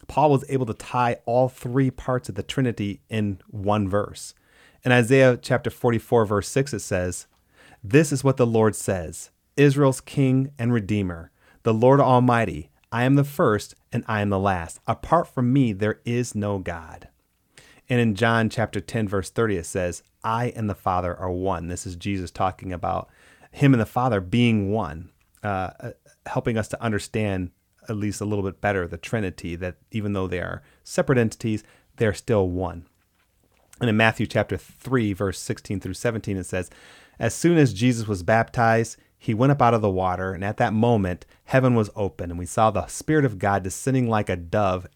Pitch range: 95-120 Hz